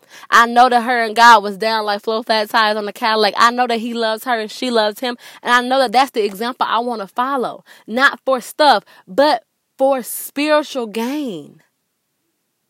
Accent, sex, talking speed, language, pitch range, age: American, female, 205 wpm, English, 195-235 Hz, 20-39